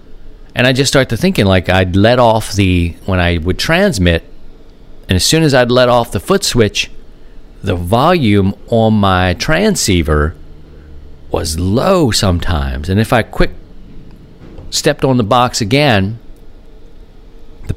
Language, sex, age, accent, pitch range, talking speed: English, male, 50-69, American, 90-125 Hz, 145 wpm